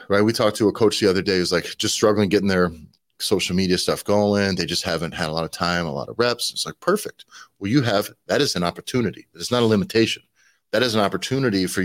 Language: English